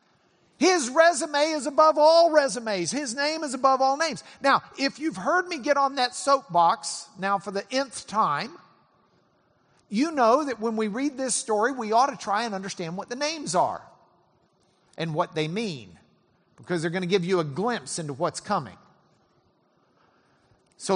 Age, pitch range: 50-69, 180-280 Hz